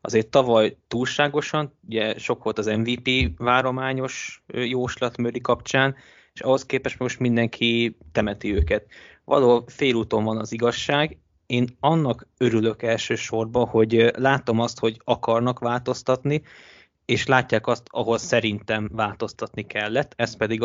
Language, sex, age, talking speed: Hungarian, male, 20-39, 120 wpm